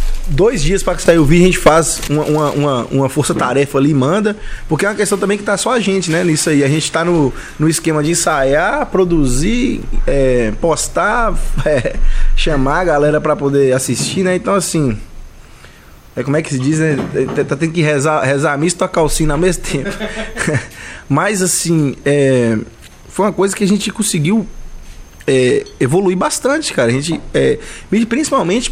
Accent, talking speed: Brazilian, 180 wpm